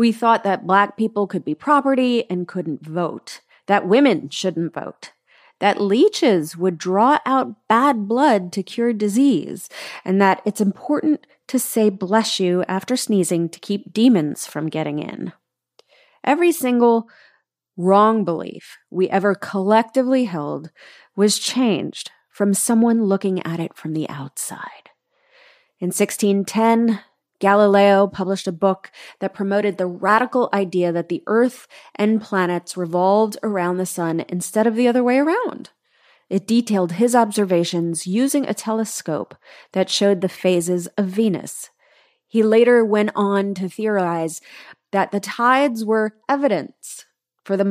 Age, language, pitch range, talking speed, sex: 30-49, English, 185-235 Hz, 140 wpm, female